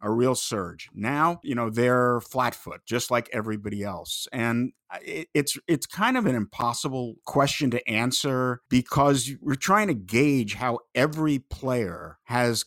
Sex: male